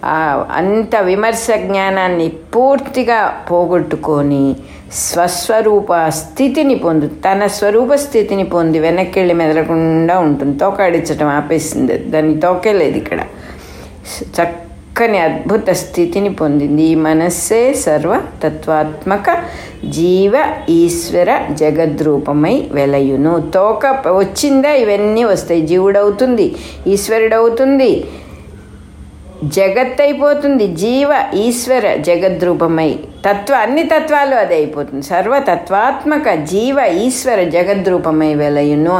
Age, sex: 60-79, female